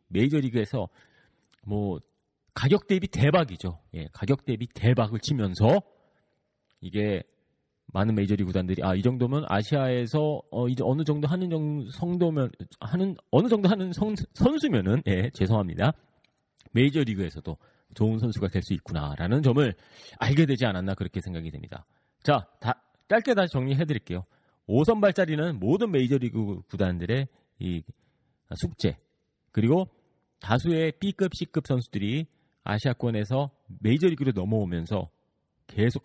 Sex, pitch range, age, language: male, 100-150 Hz, 40-59, Korean